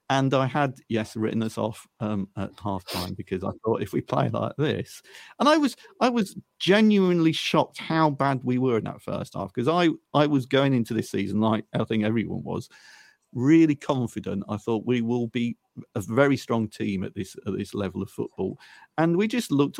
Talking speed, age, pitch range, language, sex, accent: 210 wpm, 40-59, 110-150 Hz, English, male, British